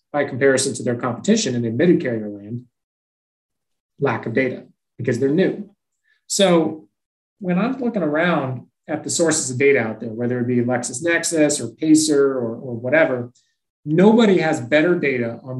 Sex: male